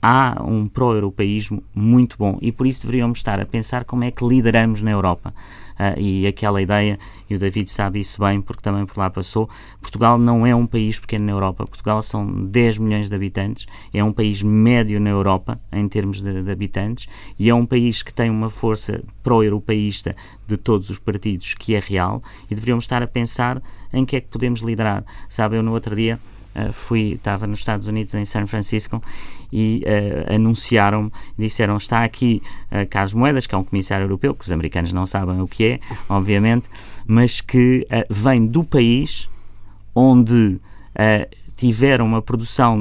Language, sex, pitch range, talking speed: Portuguese, male, 100-115 Hz, 185 wpm